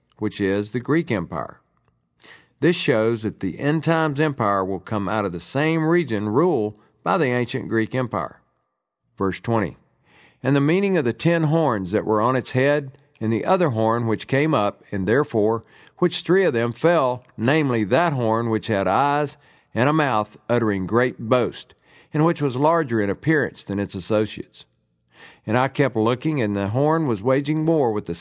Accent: American